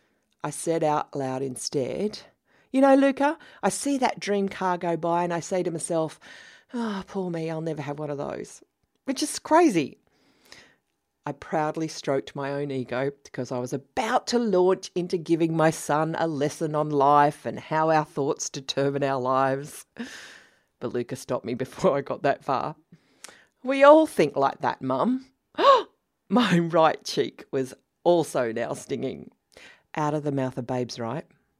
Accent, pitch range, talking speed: Australian, 140-195 Hz, 170 wpm